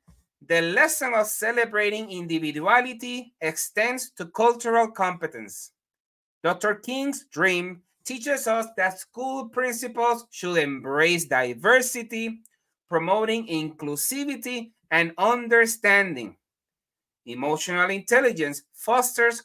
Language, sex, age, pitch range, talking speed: English, male, 30-49, 170-235 Hz, 85 wpm